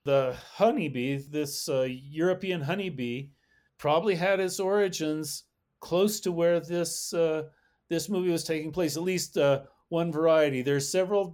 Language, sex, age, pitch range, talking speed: English, male, 40-59, 135-180 Hz, 150 wpm